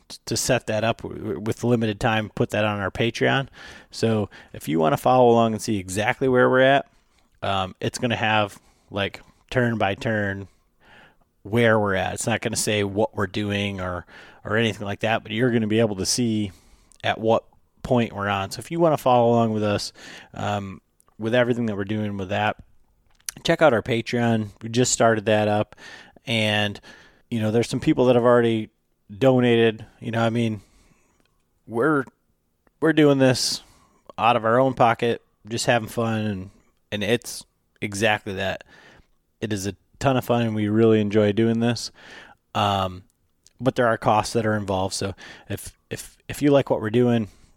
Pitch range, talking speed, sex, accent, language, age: 105-120 Hz, 190 wpm, male, American, English, 30-49